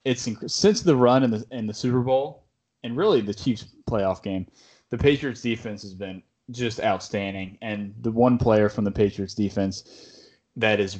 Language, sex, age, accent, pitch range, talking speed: English, male, 20-39, American, 105-125 Hz, 180 wpm